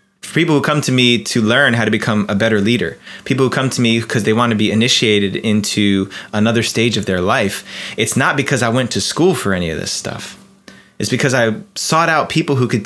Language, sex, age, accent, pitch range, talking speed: English, male, 20-39, American, 105-140 Hz, 235 wpm